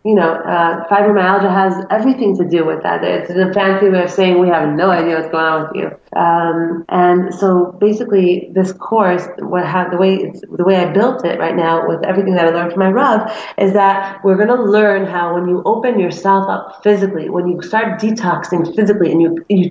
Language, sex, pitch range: English, female, 180-220 Hz